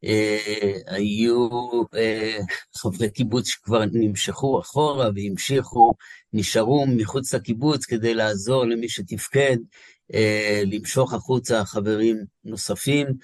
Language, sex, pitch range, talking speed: Hebrew, male, 110-130 Hz, 95 wpm